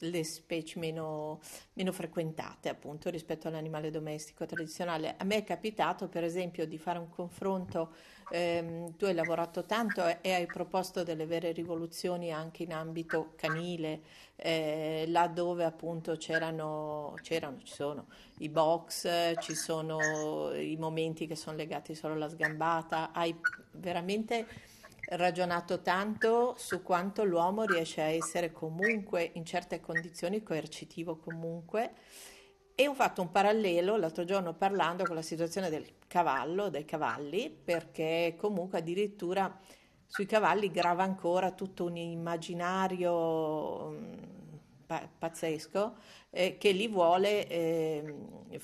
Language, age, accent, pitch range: Italian, 50-69, native, 160-185 Hz